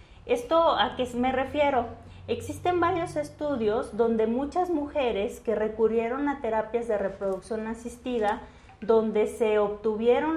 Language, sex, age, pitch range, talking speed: English, female, 30-49, 220-270 Hz, 120 wpm